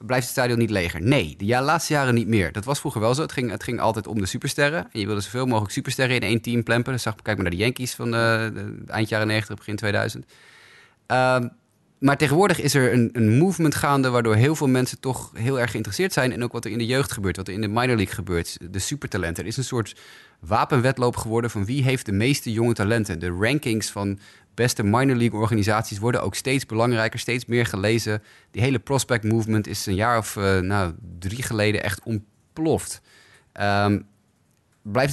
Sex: male